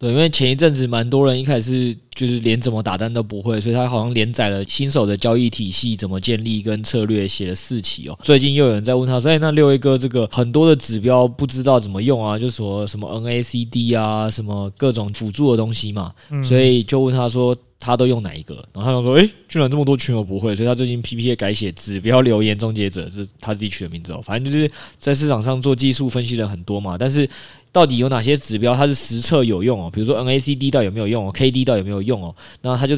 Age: 20-39